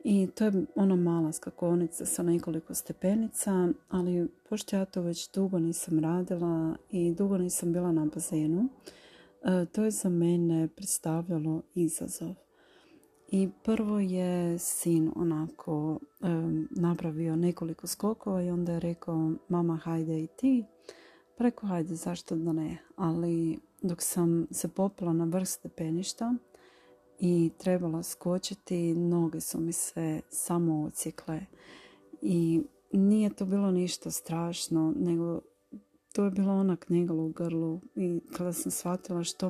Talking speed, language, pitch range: 130 wpm, Croatian, 165-185 Hz